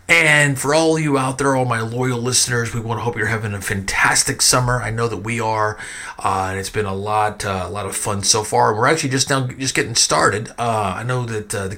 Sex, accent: male, American